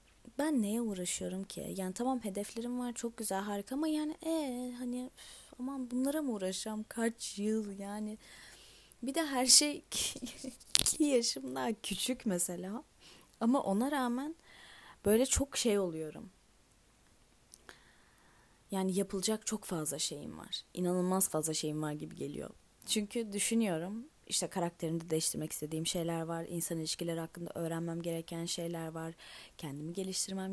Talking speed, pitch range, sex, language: 135 wpm, 180-245 Hz, female, Turkish